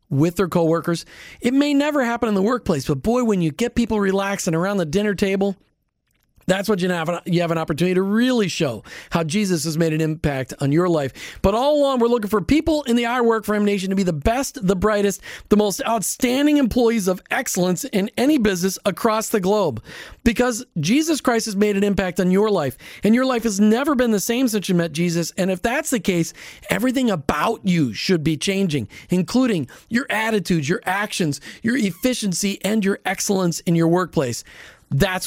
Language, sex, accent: English, male, American